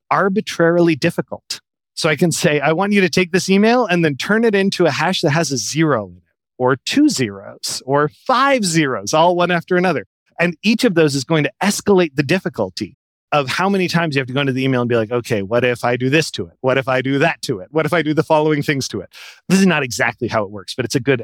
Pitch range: 135-180 Hz